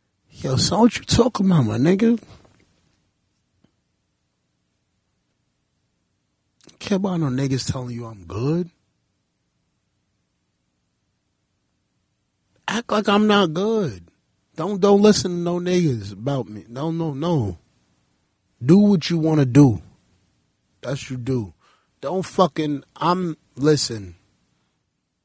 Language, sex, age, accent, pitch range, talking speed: English, male, 30-49, American, 110-175 Hz, 105 wpm